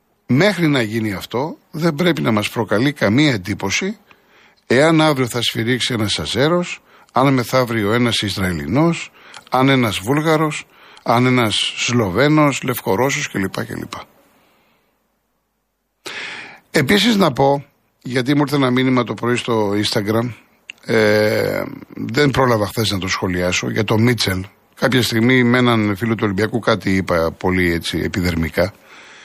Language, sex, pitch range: Greek, male, 110-145 Hz